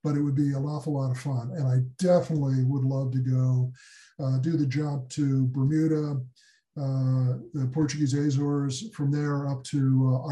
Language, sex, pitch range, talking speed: English, male, 130-145 Hz, 180 wpm